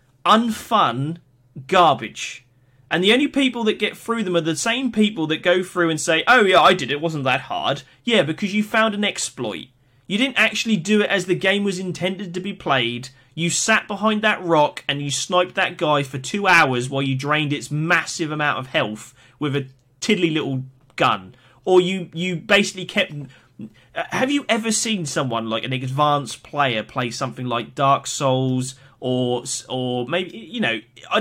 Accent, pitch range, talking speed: British, 135-220 Hz, 190 wpm